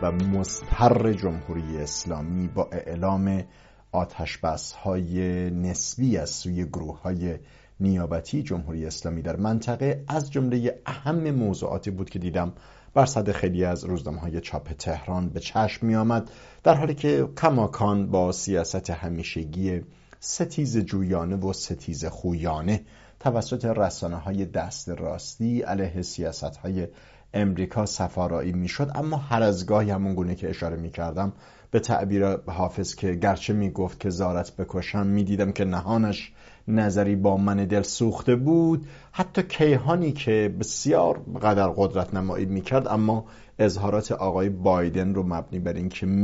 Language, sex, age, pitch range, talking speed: English, male, 50-69, 90-115 Hz, 135 wpm